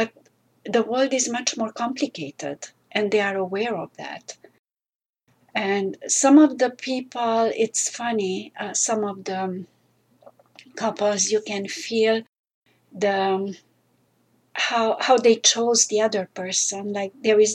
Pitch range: 190-225 Hz